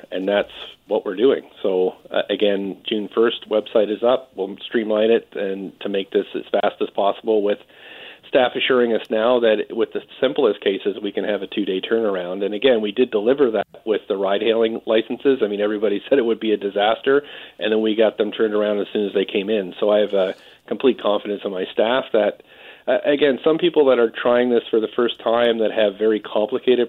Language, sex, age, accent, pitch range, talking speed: English, male, 40-59, American, 100-120 Hz, 215 wpm